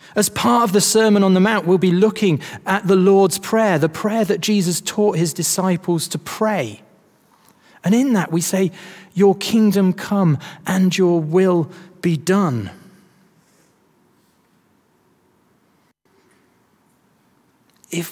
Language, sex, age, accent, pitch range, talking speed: English, male, 30-49, British, 155-200 Hz, 125 wpm